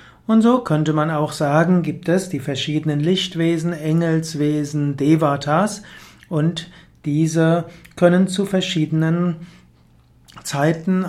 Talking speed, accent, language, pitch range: 105 wpm, German, German, 145-175 Hz